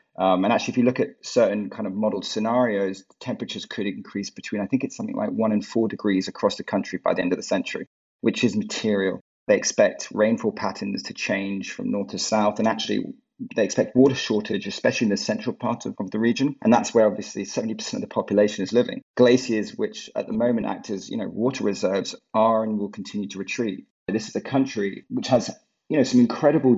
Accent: British